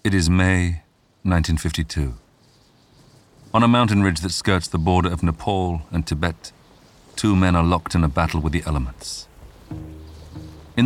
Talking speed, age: 150 wpm, 40-59